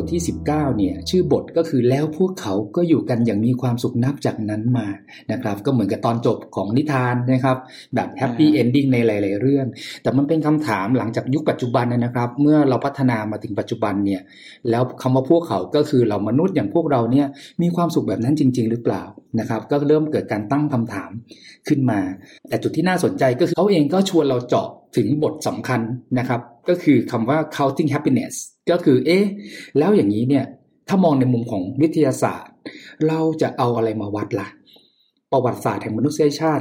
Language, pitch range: Thai, 120-155 Hz